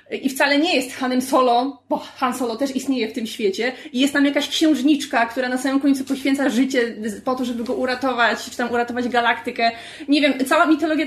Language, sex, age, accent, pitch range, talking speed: Polish, female, 20-39, native, 245-295 Hz, 205 wpm